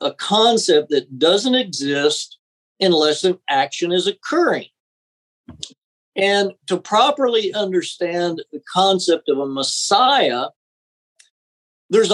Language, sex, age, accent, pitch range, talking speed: English, male, 50-69, American, 150-230 Hz, 100 wpm